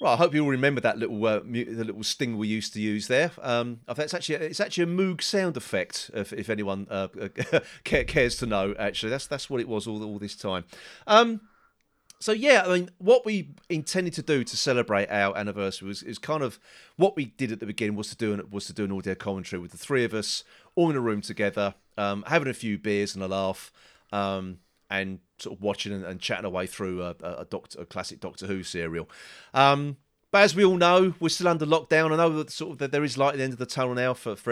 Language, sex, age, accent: English, male, 40-59, British